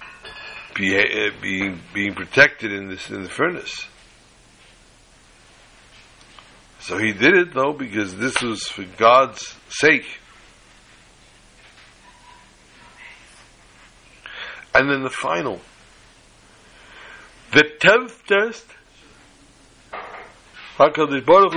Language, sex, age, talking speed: English, male, 60-79, 85 wpm